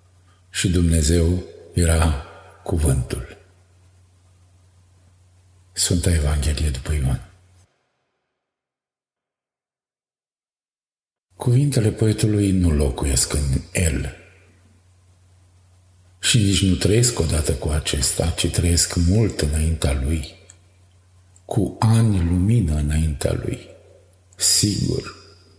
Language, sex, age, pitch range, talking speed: Romanian, male, 50-69, 85-100 Hz, 75 wpm